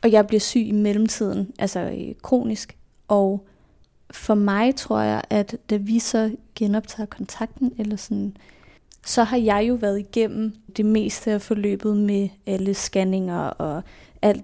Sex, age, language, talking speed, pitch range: female, 20-39, Danish, 150 wpm, 200-225 Hz